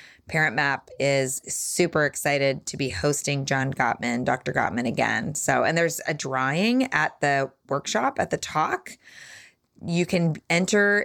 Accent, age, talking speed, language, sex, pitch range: American, 20-39, 145 wpm, English, female, 150-220 Hz